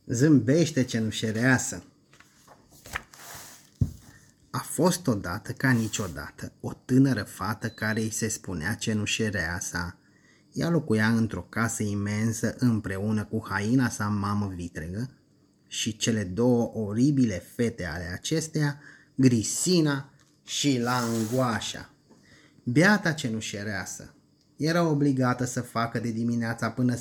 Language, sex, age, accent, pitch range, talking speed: Romanian, male, 30-49, native, 110-140 Hz, 100 wpm